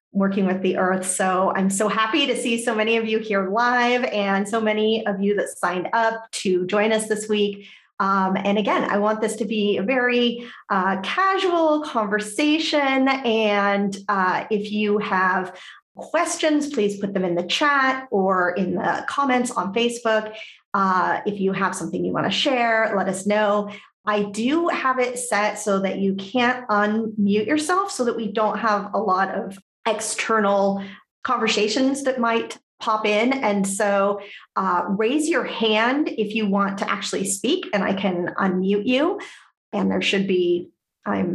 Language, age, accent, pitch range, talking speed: English, 30-49, American, 195-240 Hz, 175 wpm